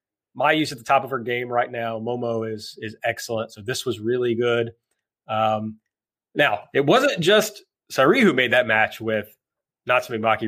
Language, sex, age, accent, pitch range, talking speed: English, male, 30-49, American, 120-145 Hz, 185 wpm